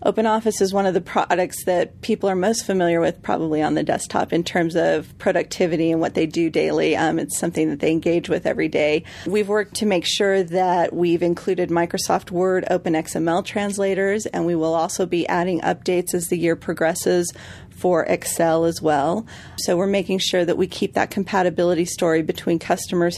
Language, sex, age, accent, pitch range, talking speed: English, female, 40-59, American, 165-195 Hz, 190 wpm